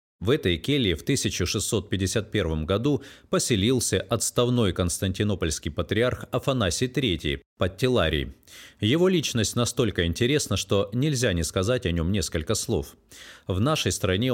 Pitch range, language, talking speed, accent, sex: 90-125 Hz, Russian, 120 wpm, native, male